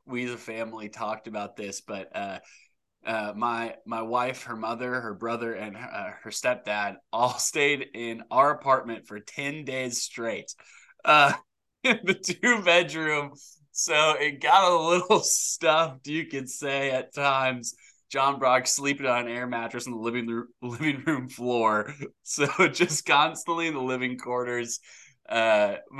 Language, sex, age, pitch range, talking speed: English, male, 20-39, 110-130 Hz, 155 wpm